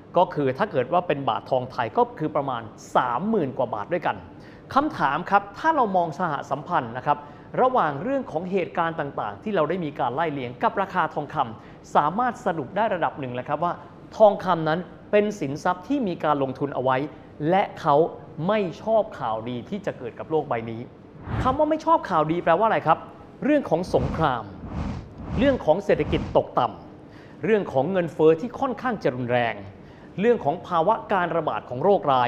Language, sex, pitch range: Thai, male, 145-210 Hz